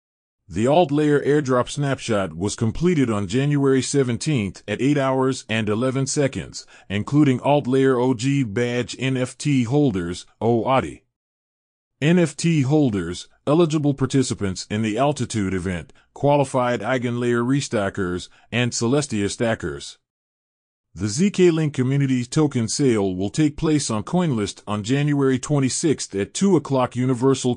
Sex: male